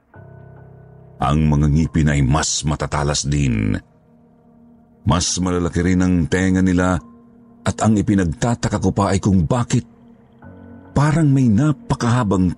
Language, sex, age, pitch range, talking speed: Filipino, male, 50-69, 85-120 Hz, 110 wpm